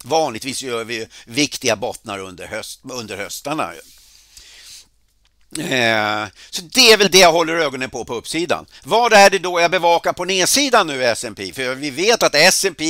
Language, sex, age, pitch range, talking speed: Swedish, male, 60-79, 135-185 Hz, 165 wpm